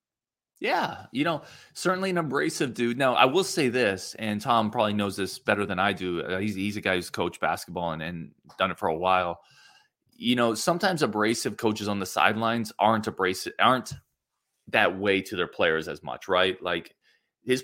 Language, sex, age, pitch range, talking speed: English, male, 20-39, 95-145 Hz, 190 wpm